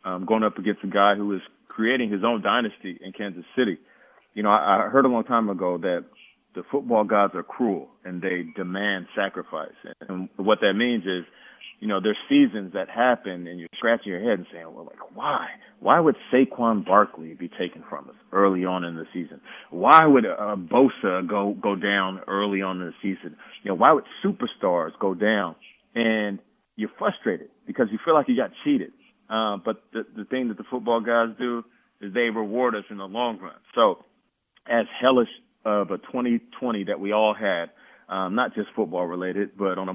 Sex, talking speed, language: male, 200 wpm, English